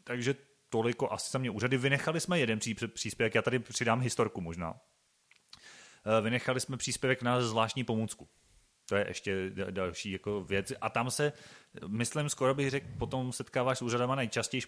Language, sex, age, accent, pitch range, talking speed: Czech, male, 30-49, native, 100-120 Hz, 170 wpm